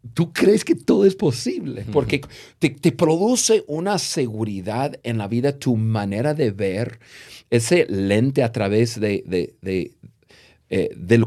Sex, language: male, Spanish